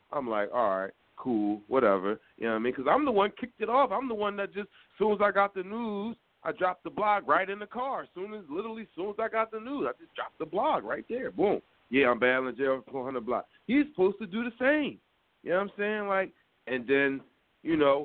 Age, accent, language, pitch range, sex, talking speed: 30-49, American, English, 145-230 Hz, male, 265 wpm